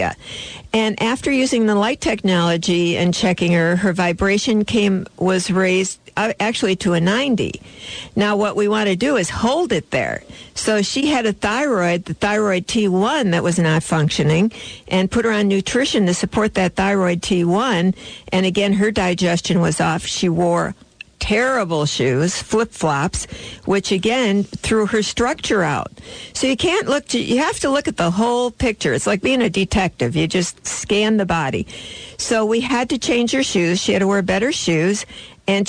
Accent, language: American, English